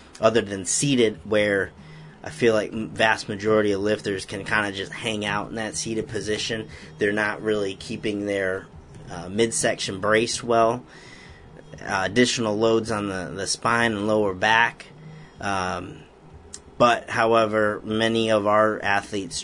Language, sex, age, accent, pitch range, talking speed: English, male, 30-49, American, 100-125 Hz, 145 wpm